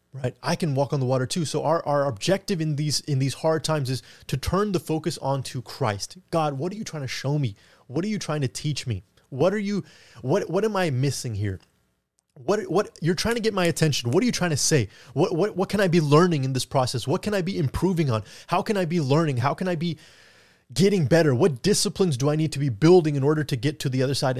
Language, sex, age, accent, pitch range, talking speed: English, male, 20-39, American, 120-165 Hz, 260 wpm